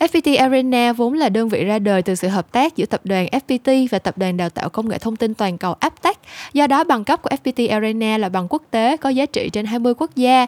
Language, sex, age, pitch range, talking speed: Vietnamese, female, 10-29, 195-260 Hz, 265 wpm